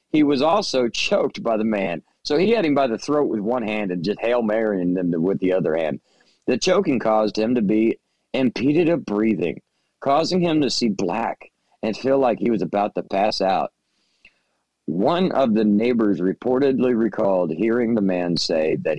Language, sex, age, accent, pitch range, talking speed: English, male, 40-59, American, 95-135 Hz, 190 wpm